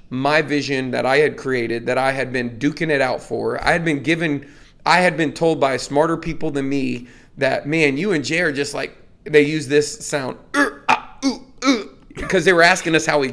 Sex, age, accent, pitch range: male, 30-49, American, 135-160 Hz